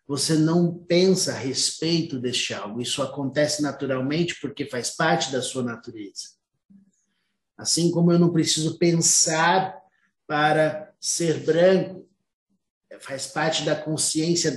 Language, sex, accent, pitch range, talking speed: Portuguese, male, Brazilian, 140-170 Hz, 120 wpm